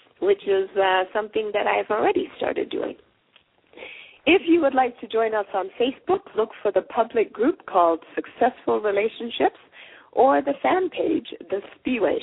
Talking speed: 155 wpm